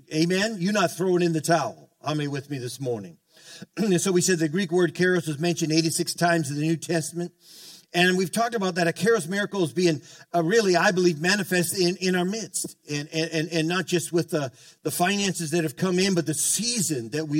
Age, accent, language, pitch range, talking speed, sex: 50-69, American, English, 160-180 Hz, 220 wpm, male